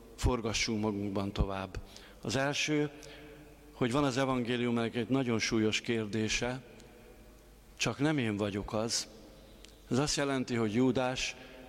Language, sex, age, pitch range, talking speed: Hungarian, male, 50-69, 110-125 Hz, 120 wpm